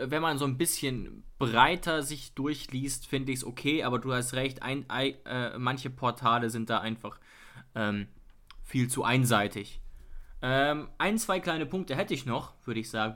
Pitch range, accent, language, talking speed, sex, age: 120-150 Hz, German, German, 180 wpm, male, 20-39